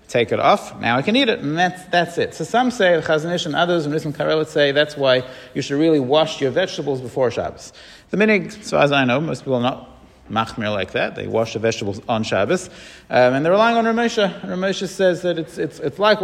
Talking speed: 240 wpm